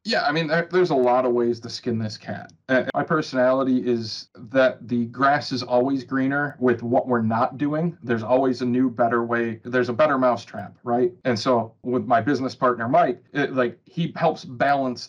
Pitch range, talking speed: 120-135 Hz, 200 wpm